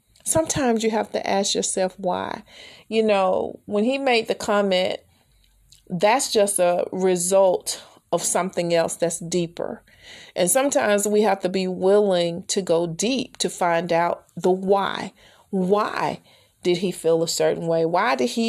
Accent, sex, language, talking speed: American, female, English, 155 wpm